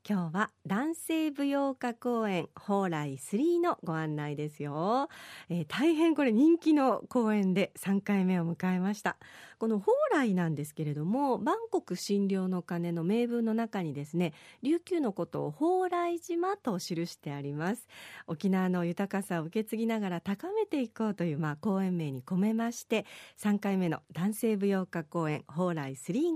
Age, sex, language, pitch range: 40-59, female, Japanese, 175-260 Hz